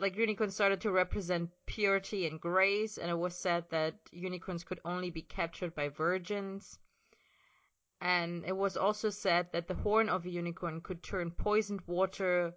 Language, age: English, 30-49